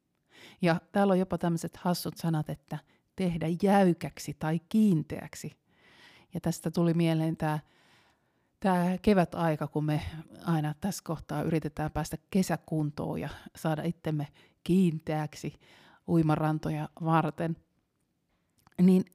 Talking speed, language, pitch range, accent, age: 105 wpm, Finnish, 155-180 Hz, native, 30-49